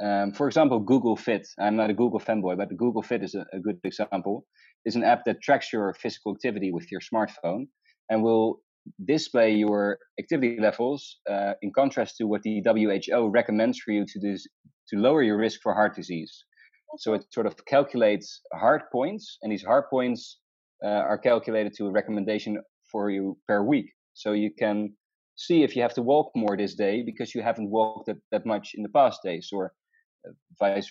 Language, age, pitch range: English, 30-49, 105-120 Hz